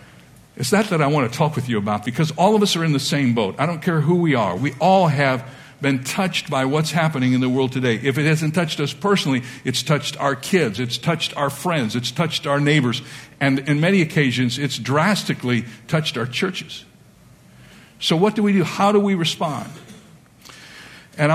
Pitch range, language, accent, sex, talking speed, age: 140-190 Hz, English, American, male, 210 wpm, 60-79